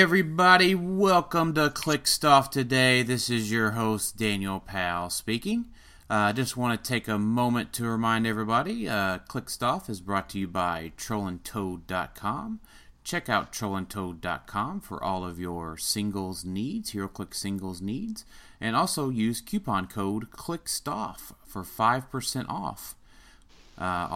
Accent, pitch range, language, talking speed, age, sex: American, 95-120 Hz, English, 135 wpm, 30-49, male